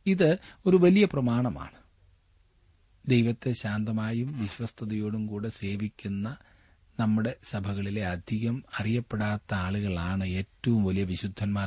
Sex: male